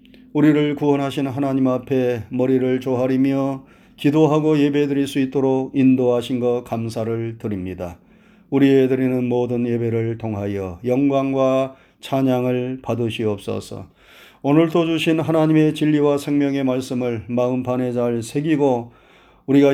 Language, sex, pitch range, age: Korean, male, 125-145 Hz, 30-49